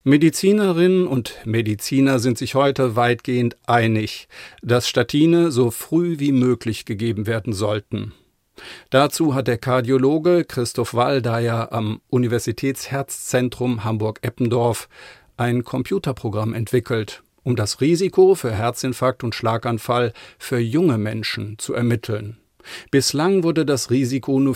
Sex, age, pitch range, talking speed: male, 50-69, 115-140 Hz, 110 wpm